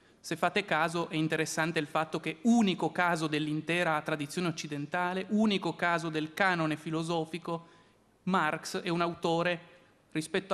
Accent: native